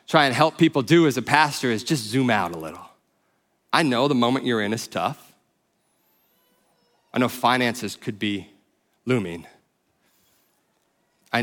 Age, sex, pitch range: 30-49, male, 115-155 Hz